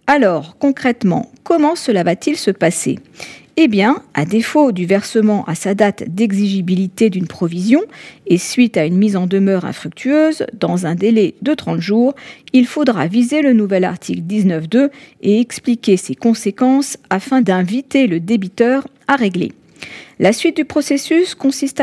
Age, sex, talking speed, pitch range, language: 40-59, female, 150 wpm, 190-255 Hz, French